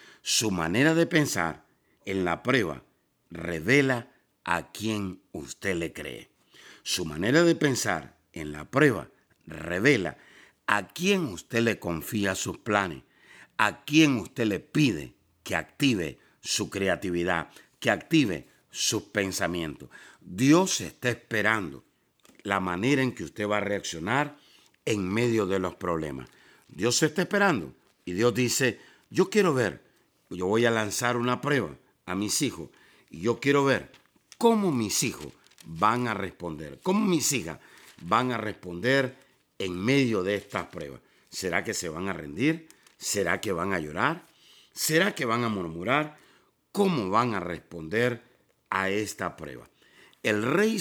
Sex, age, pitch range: male, 60-79, 95-140 Hz